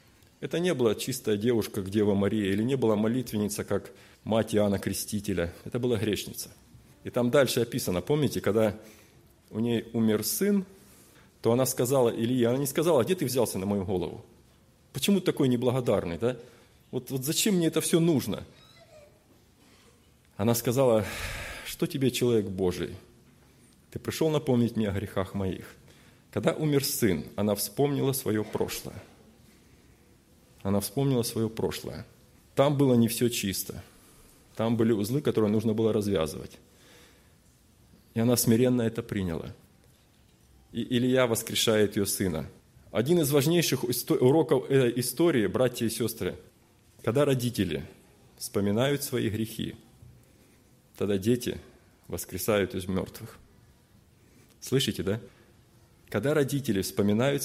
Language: Russian